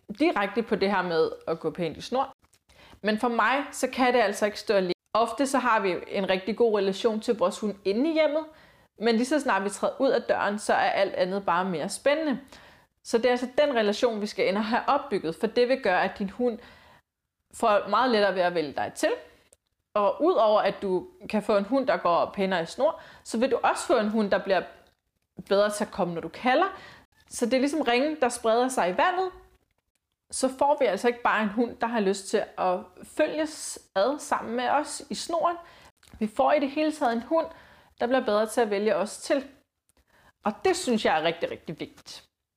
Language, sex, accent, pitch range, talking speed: Danish, female, native, 195-265 Hz, 225 wpm